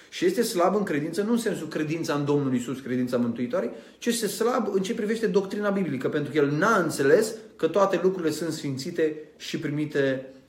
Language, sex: Romanian, male